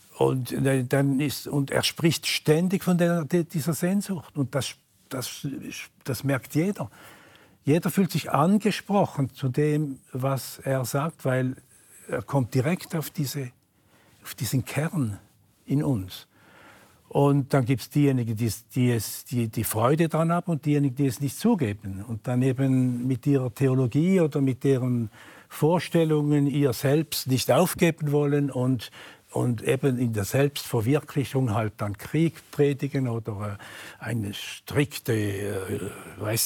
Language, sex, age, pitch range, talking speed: German, male, 60-79, 115-145 Hz, 125 wpm